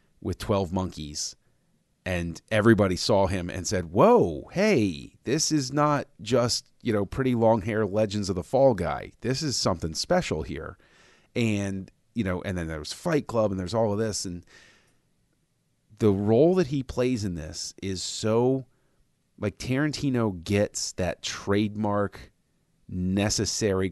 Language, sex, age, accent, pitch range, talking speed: English, male, 30-49, American, 95-115 Hz, 150 wpm